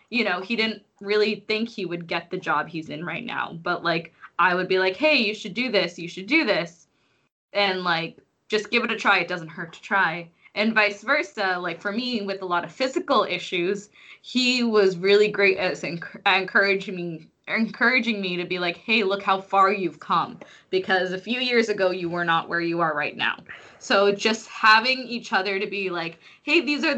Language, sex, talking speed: English, female, 215 wpm